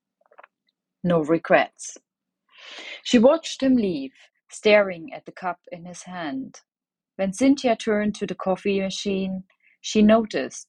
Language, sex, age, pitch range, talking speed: English, female, 30-49, 160-215 Hz, 125 wpm